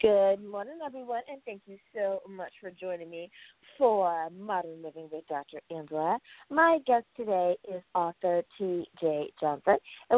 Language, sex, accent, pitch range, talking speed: English, female, American, 170-230 Hz, 145 wpm